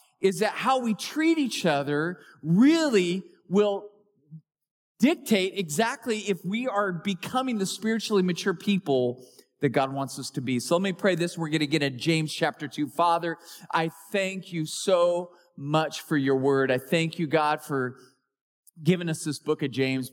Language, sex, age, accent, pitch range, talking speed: English, male, 40-59, American, 140-190 Hz, 175 wpm